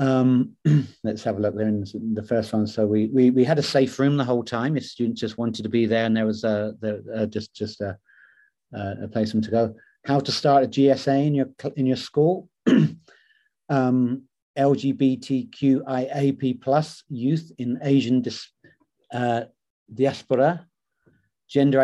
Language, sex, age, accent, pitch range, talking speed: English, male, 40-59, British, 115-140 Hz, 170 wpm